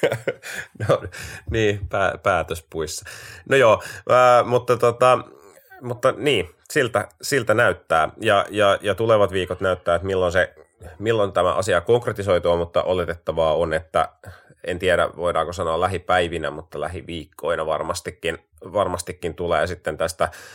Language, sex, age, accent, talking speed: Finnish, male, 30-49, native, 125 wpm